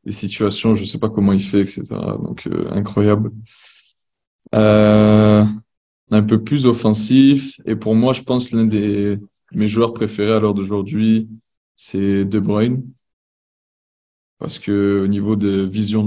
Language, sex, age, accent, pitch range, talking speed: French, male, 20-39, French, 100-115 Hz, 145 wpm